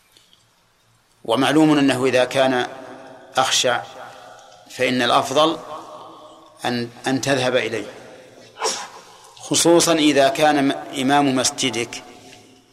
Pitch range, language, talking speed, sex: 130-150 Hz, Arabic, 75 wpm, male